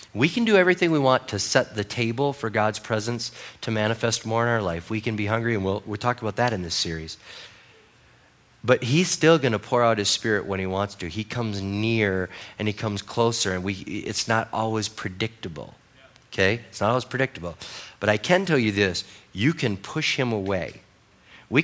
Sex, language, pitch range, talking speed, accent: male, English, 95-115 Hz, 205 wpm, American